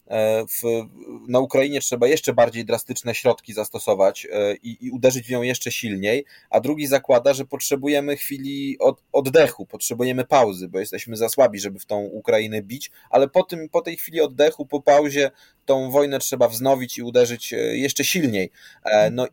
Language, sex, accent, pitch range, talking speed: Polish, male, native, 120-145 Hz, 155 wpm